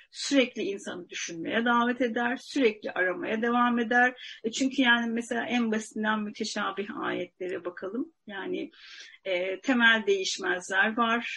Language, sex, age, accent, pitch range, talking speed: Turkish, female, 40-59, native, 220-280 Hz, 120 wpm